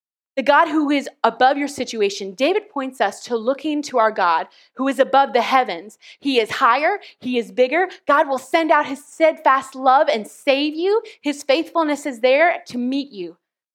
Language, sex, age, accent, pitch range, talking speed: English, female, 20-39, American, 215-280 Hz, 190 wpm